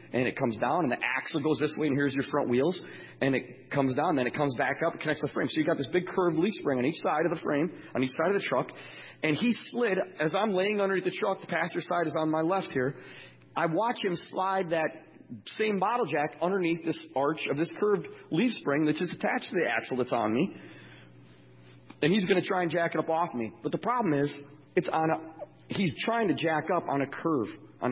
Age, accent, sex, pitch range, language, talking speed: 40-59, American, male, 140-180 Hz, English, 250 wpm